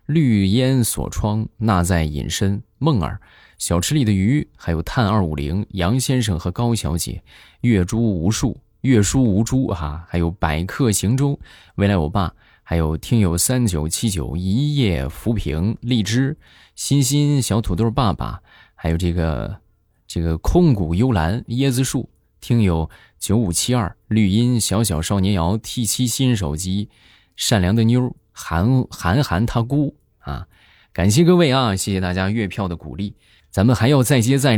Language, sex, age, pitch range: Chinese, male, 20-39, 85-120 Hz